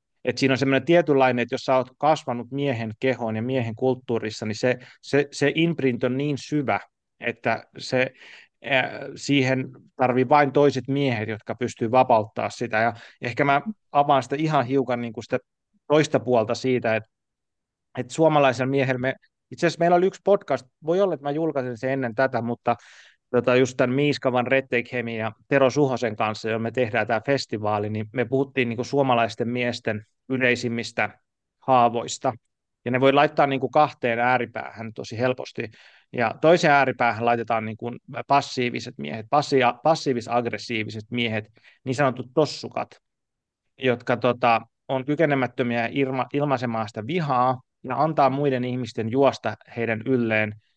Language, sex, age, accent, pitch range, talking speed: Finnish, male, 30-49, native, 115-140 Hz, 150 wpm